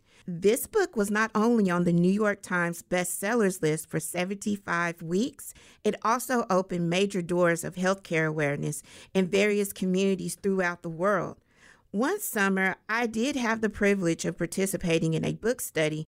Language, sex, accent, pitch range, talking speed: English, female, American, 170-215 Hz, 155 wpm